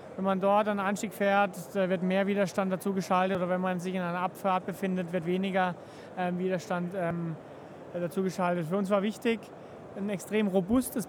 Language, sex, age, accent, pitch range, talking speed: German, male, 30-49, German, 185-215 Hz, 155 wpm